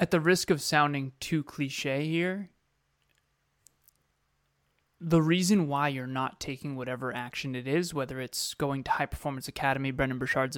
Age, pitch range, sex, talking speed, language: 20-39, 135-165 Hz, male, 155 wpm, English